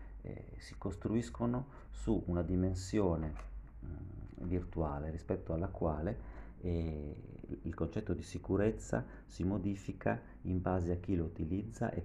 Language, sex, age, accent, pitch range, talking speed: Italian, male, 40-59, native, 75-90 Hz, 125 wpm